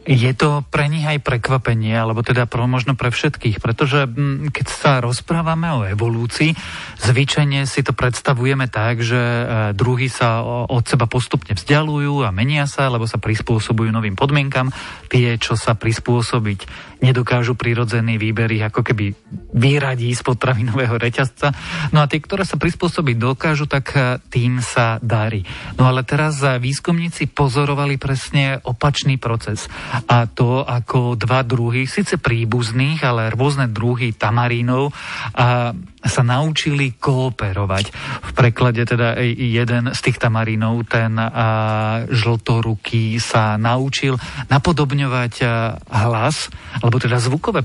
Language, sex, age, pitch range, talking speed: Slovak, male, 40-59, 115-140 Hz, 125 wpm